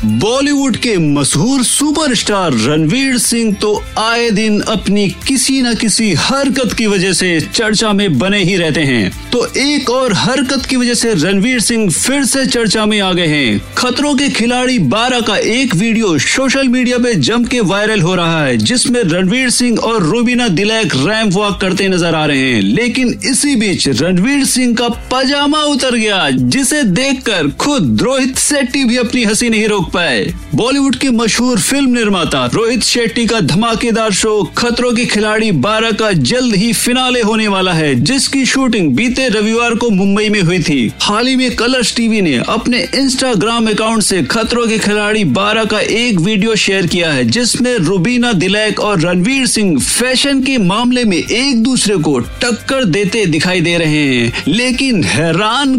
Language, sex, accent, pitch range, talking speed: Hindi, male, native, 195-245 Hz, 170 wpm